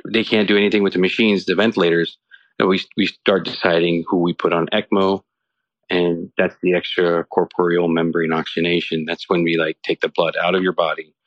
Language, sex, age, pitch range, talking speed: English, male, 40-59, 90-125 Hz, 195 wpm